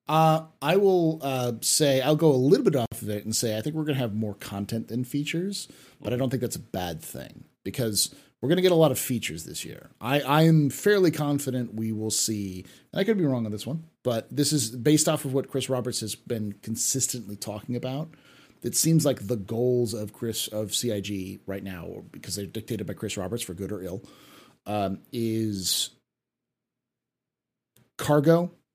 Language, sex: English, male